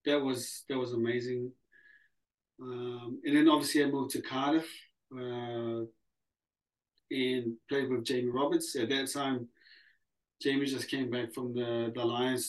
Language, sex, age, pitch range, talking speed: English, male, 30-49, 115-140 Hz, 145 wpm